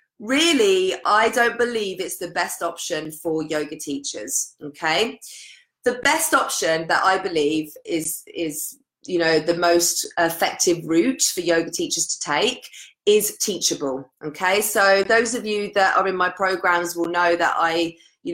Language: English